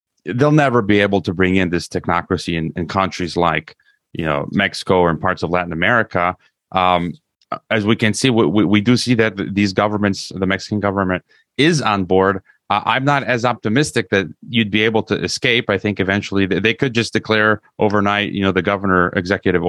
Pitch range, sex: 95-120 Hz, male